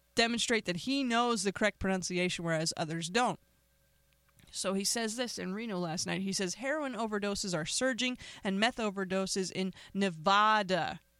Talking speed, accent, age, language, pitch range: 155 wpm, American, 30-49, English, 175-245 Hz